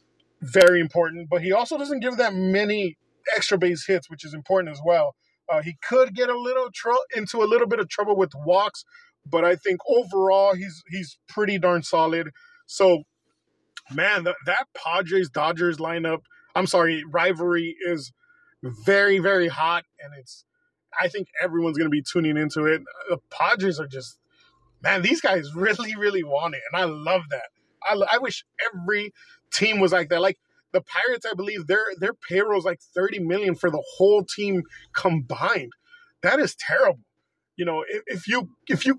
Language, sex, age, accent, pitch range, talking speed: English, male, 20-39, American, 175-230 Hz, 180 wpm